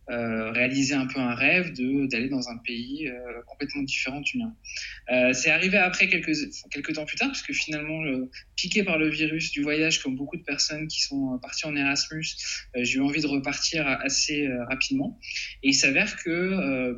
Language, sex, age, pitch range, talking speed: French, male, 20-39, 130-175 Hz, 200 wpm